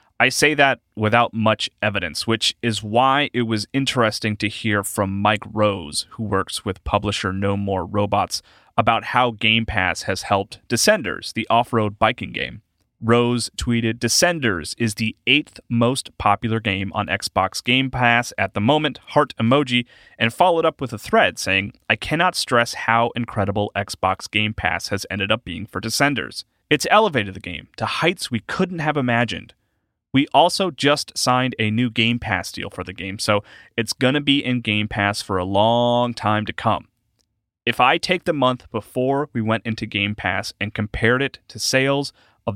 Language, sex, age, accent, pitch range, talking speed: English, male, 30-49, American, 105-125 Hz, 180 wpm